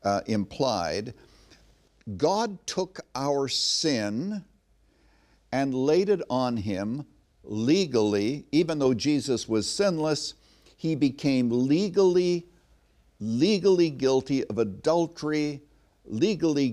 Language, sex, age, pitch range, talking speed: English, male, 60-79, 115-165 Hz, 90 wpm